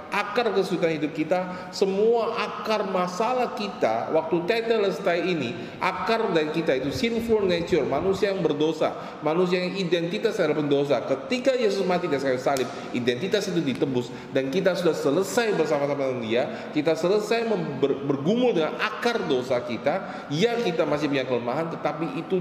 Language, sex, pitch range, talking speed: Indonesian, male, 160-215 Hz, 145 wpm